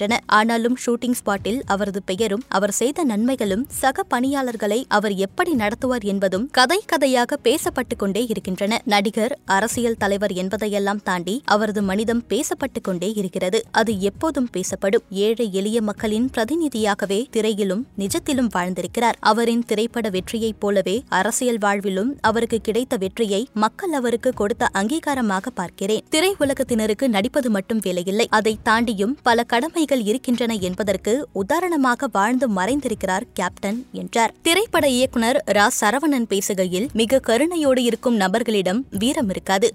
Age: 20-39